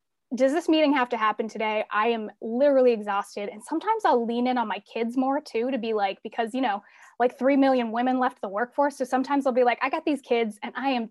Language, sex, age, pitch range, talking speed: English, female, 20-39, 225-275 Hz, 255 wpm